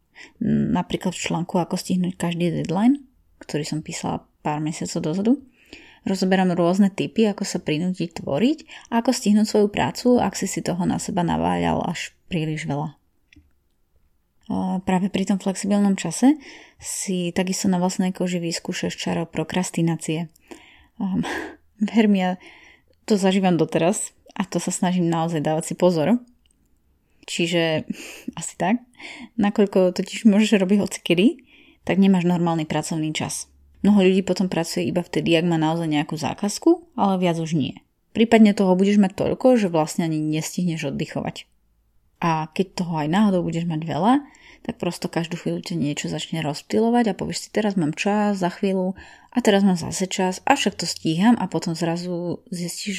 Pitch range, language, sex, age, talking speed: 165-210 Hz, Slovak, female, 20-39, 155 wpm